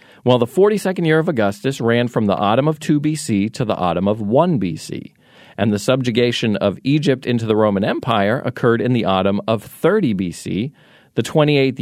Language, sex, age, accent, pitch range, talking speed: English, male, 40-59, American, 105-145 Hz, 190 wpm